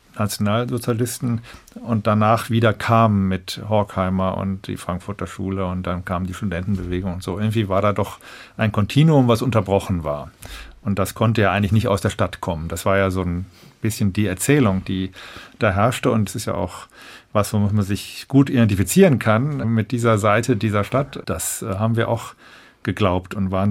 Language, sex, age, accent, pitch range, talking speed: German, male, 50-69, German, 95-115 Hz, 180 wpm